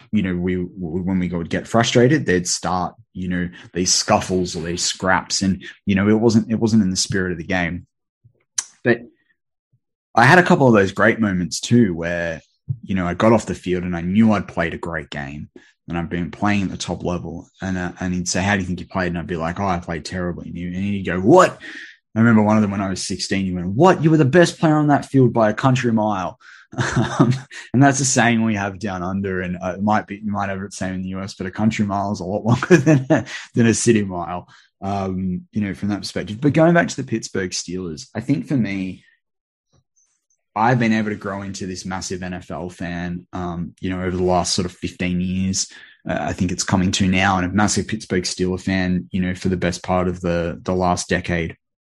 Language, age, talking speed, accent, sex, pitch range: English, 20-39, 245 wpm, Australian, male, 90-110 Hz